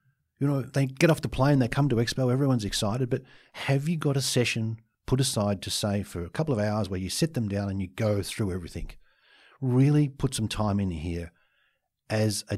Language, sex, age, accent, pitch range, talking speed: English, male, 50-69, Australian, 95-130 Hz, 220 wpm